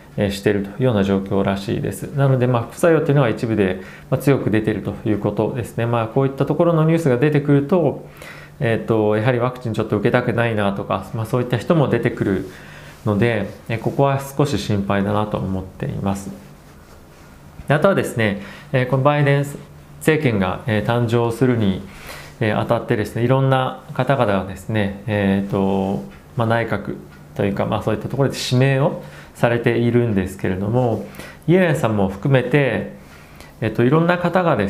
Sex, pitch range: male, 100-135 Hz